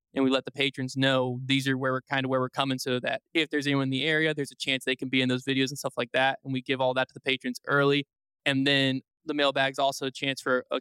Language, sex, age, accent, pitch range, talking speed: English, male, 20-39, American, 130-150 Hz, 305 wpm